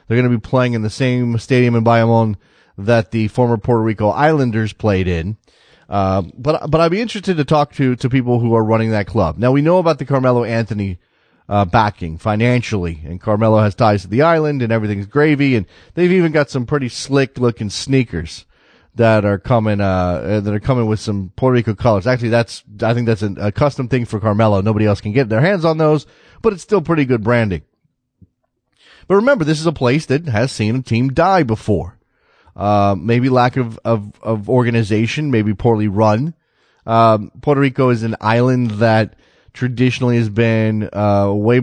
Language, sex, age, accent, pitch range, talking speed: English, male, 30-49, American, 105-130 Hz, 195 wpm